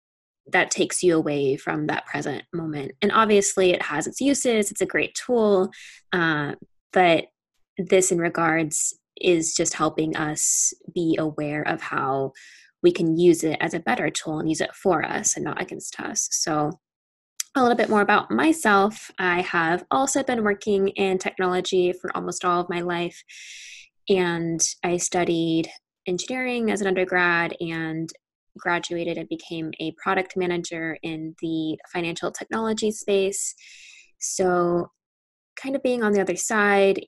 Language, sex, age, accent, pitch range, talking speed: English, female, 10-29, American, 160-195 Hz, 155 wpm